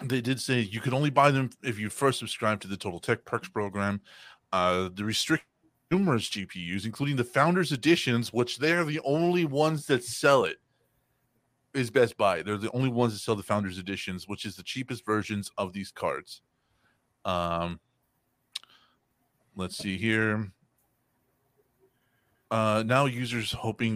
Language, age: English, 30-49